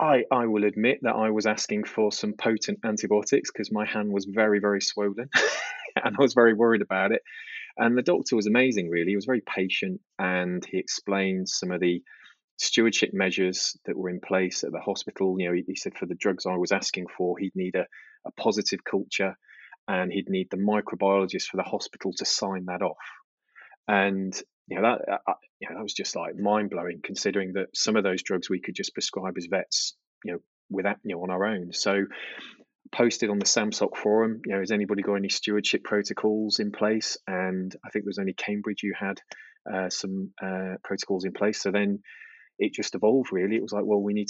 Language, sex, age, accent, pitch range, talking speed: English, male, 20-39, British, 95-110 Hz, 215 wpm